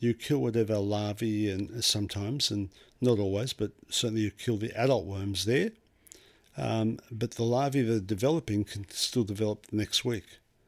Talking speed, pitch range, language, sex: 170 wpm, 105-125 Hz, English, male